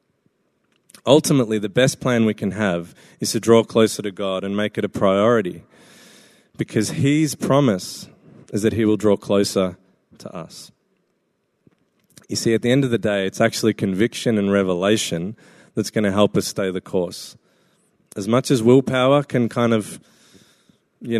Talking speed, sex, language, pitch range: 165 wpm, male, English, 105-135 Hz